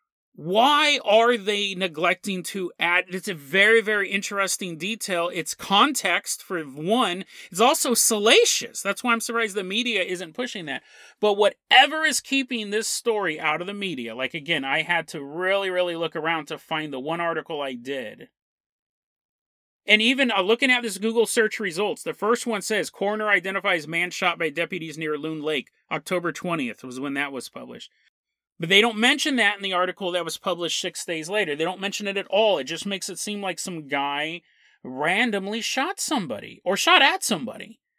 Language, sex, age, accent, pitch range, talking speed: English, male, 30-49, American, 160-215 Hz, 185 wpm